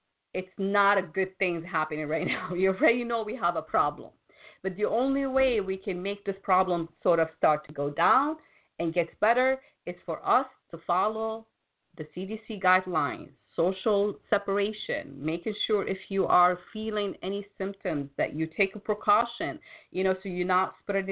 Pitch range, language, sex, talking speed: 160-210 Hz, English, female, 175 wpm